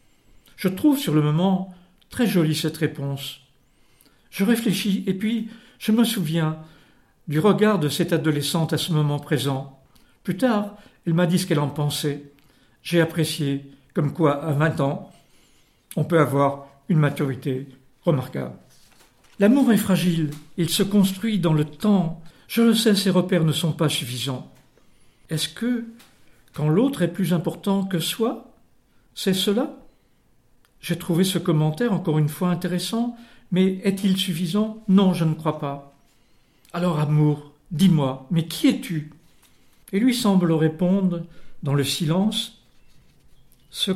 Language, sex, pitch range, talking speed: French, male, 150-195 Hz, 145 wpm